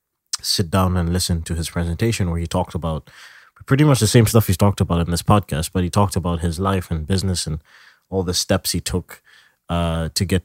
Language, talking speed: English, 225 wpm